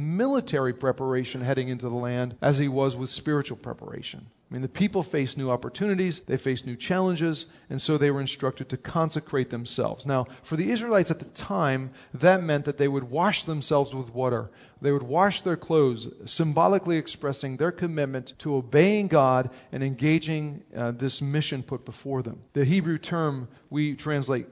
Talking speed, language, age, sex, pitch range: 175 wpm, English, 40-59, male, 130-170 Hz